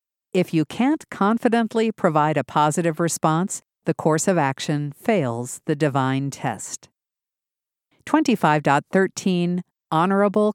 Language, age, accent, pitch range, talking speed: English, 50-69, American, 145-200 Hz, 100 wpm